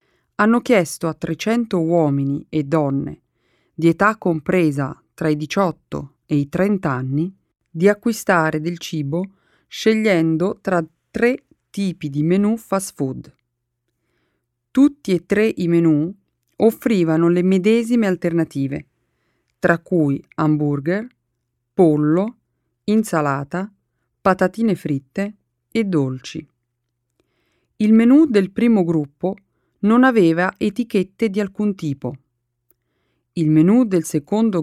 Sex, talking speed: female, 105 wpm